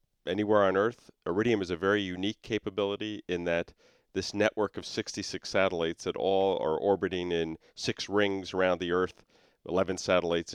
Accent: American